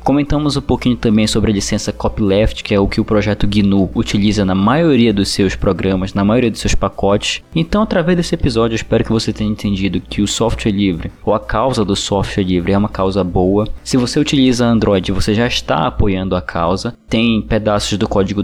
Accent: Brazilian